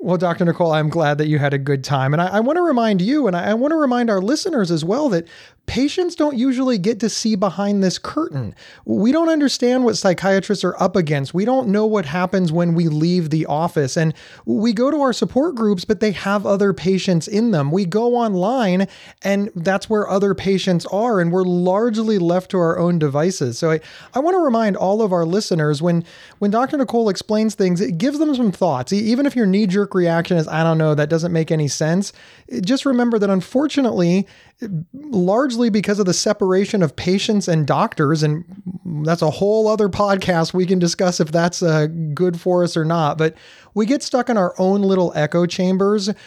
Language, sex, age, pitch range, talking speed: English, male, 30-49, 165-215 Hz, 210 wpm